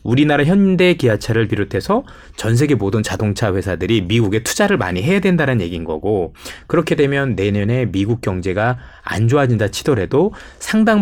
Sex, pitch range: male, 100-145 Hz